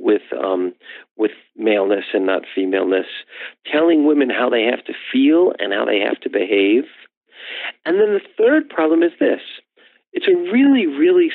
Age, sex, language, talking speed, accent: 50-69, male, English, 165 wpm, American